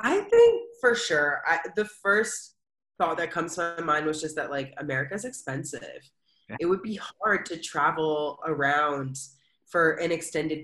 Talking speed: 165 wpm